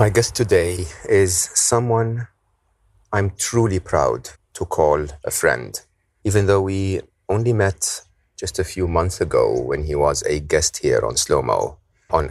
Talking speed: 155 wpm